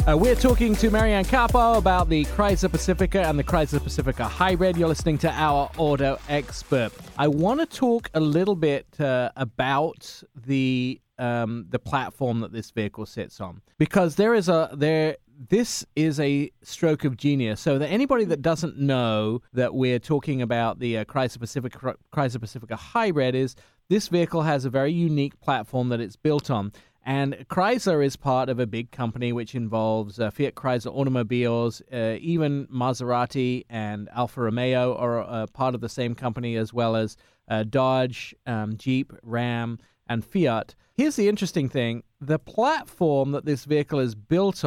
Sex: male